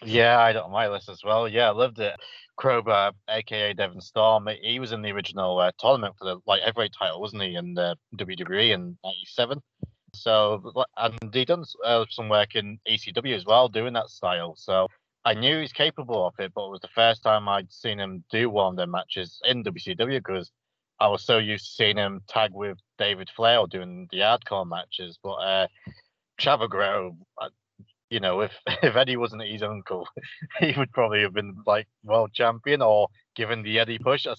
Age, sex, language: 30-49, male, English